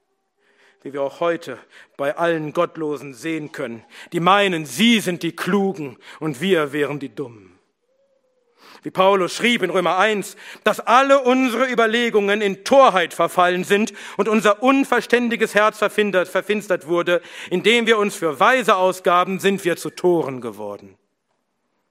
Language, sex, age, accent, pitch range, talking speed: German, male, 50-69, German, 180-230 Hz, 140 wpm